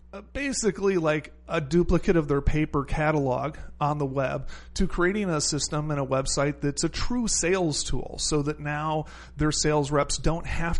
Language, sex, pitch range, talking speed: English, male, 140-165 Hz, 170 wpm